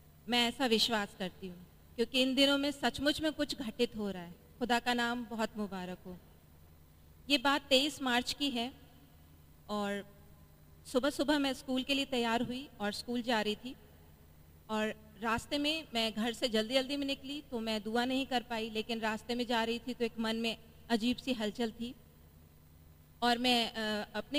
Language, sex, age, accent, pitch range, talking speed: Hindi, female, 40-59, native, 210-255 Hz, 185 wpm